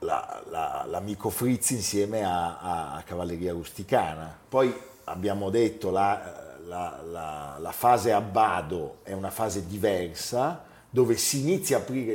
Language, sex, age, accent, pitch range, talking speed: Italian, male, 40-59, native, 85-115 Hz, 150 wpm